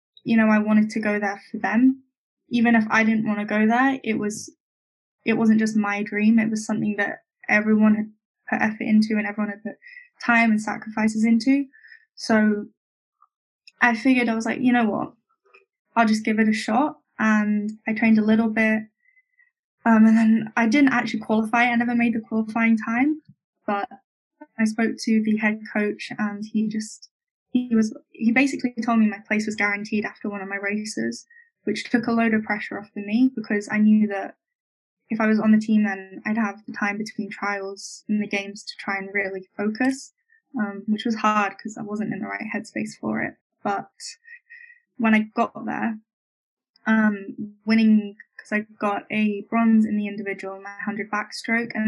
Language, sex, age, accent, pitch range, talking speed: English, female, 10-29, British, 210-240 Hz, 195 wpm